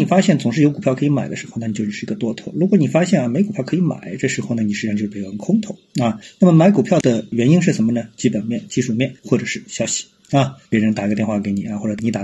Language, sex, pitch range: Chinese, male, 120-200 Hz